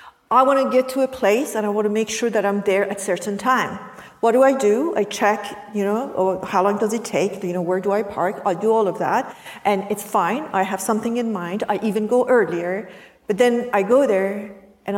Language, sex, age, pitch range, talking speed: English, female, 50-69, 200-265 Hz, 245 wpm